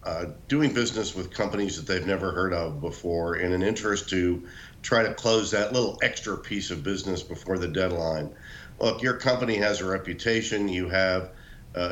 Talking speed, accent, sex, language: 180 wpm, American, male, English